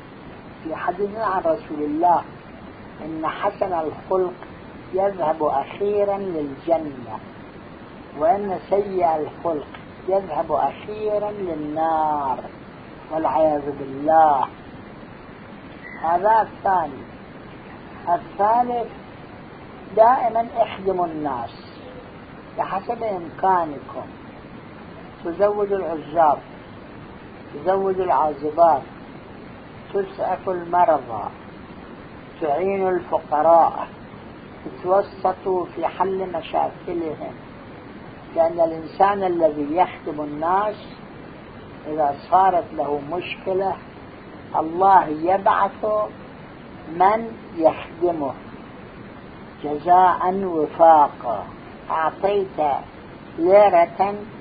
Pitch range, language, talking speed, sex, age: 160-195 Hz, Arabic, 60 wpm, male, 50-69